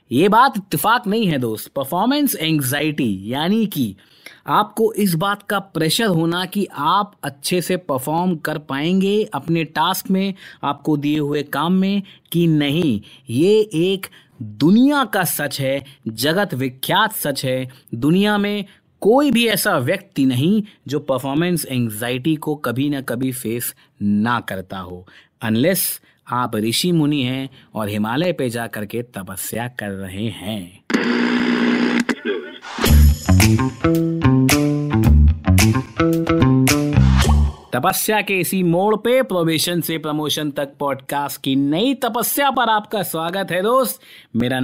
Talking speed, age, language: 125 wpm, 30-49, Hindi